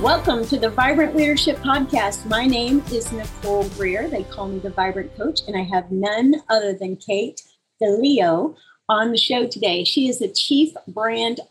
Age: 40-59